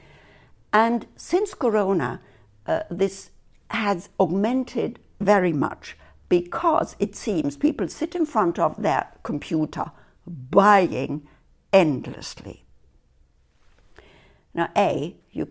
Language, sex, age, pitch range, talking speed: English, female, 60-79, 150-210 Hz, 95 wpm